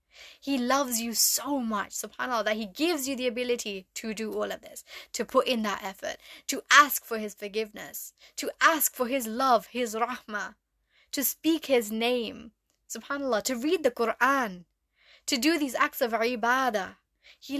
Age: 10-29